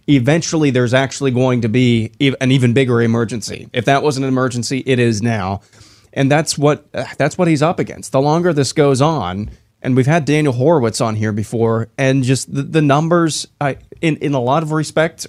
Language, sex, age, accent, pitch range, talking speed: English, male, 20-39, American, 110-130 Hz, 200 wpm